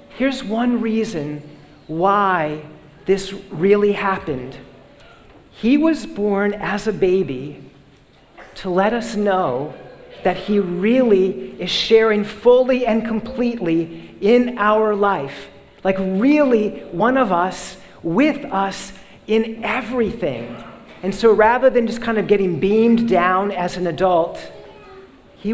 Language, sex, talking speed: English, male, 120 wpm